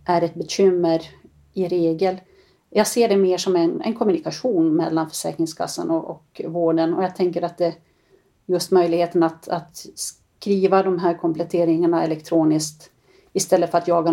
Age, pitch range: 40-59, 170-185 Hz